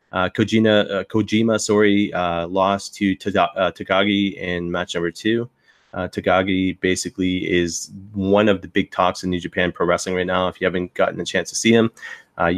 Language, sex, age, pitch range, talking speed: English, male, 30-49, 90-110 Hz, 195 wpm